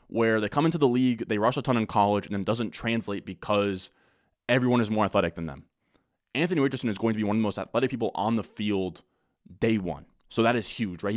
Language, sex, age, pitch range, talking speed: English, male, 20-39, 100-125 Hz, 245 wpm